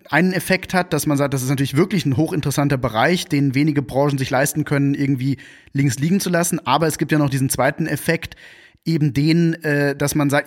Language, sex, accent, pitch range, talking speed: German, male, German, 140-165 Hz, 220 wpm